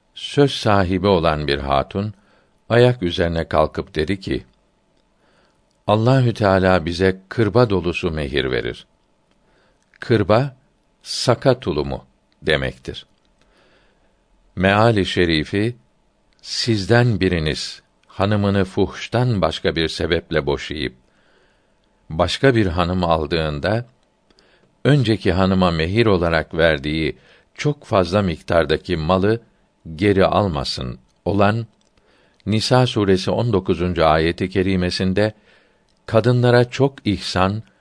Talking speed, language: 90 wpm, Turkish